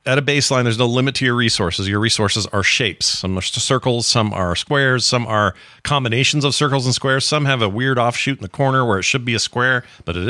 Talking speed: 250 wpm